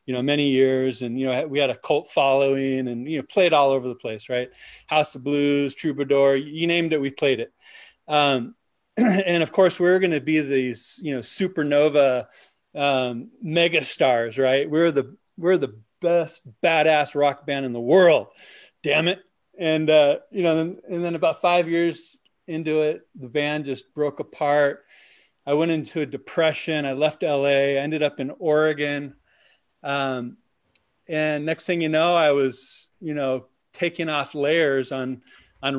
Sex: male